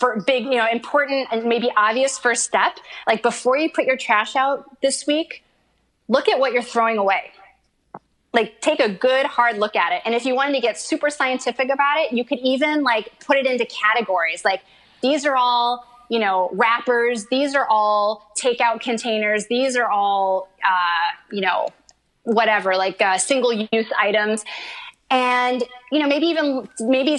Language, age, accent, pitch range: English, 30-49, American, 215-275 Hz